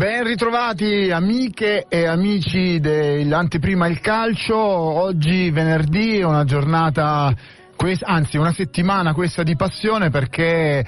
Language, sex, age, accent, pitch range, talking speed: Italian, male, 40-59, native, 145-170 Hz, 110 wpm